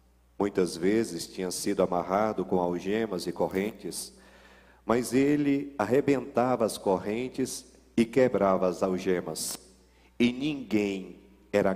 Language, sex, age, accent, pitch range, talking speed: Portuguese, male, 40-59, Brazilian, 90-130 Hz, 105 wpm